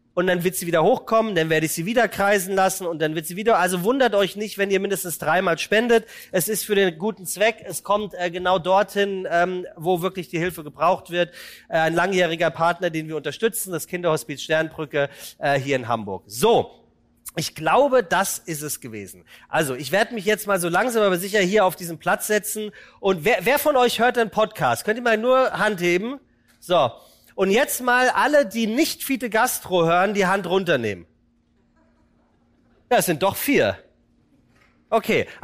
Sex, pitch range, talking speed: male, 175-230 Hz, 195 wpm